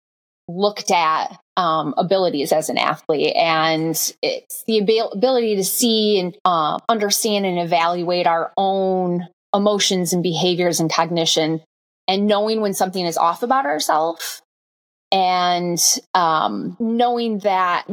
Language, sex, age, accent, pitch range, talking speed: English, female, 20-39, American, 165-210 Hz, 125 wpm